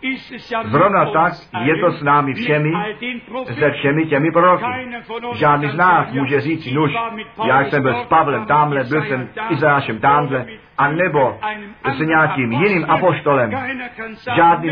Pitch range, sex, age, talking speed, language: 150-225 Hz, male, 50-69, 135 wpm, Czech